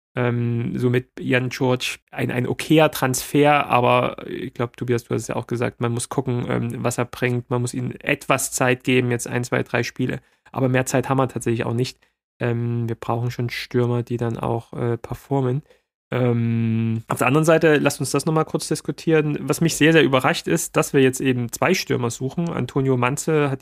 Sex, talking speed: male, 210 wpm